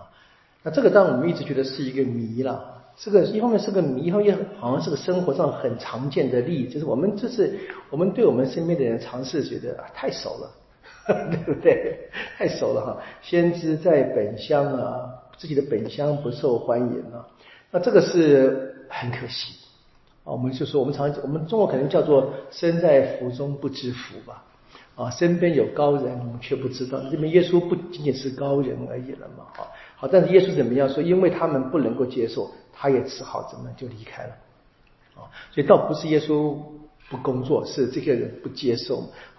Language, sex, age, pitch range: Chinese, male, 50-69, 130-175 Hz